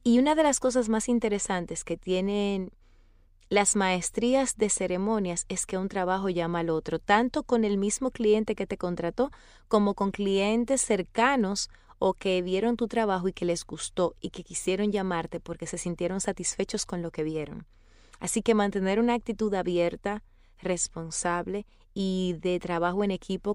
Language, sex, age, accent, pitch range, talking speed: Spanish, female, 30-49, American, 165-205 Hz, 165 wpm